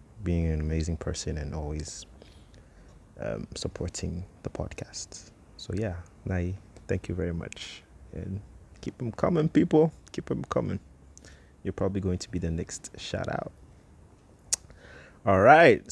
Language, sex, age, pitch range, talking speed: English, male, 30-49, 80-100 Hz, 135 wpm